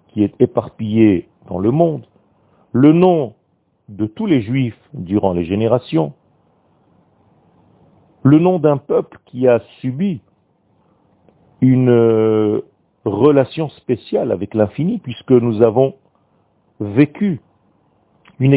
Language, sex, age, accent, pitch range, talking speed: French, male, 50-69, French, 110-145 Hz, 100 wpm